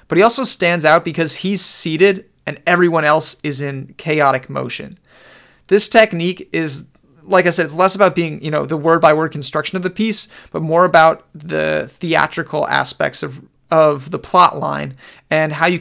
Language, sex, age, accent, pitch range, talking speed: English, male, 30-49, American, 140-175 Hz, 180 wpm